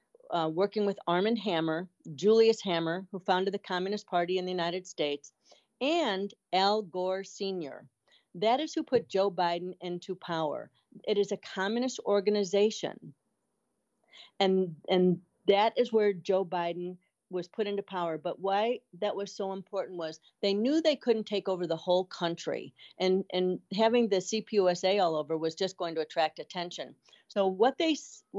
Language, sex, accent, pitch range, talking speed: English, female, American, 175-220 Hz, 165 wpm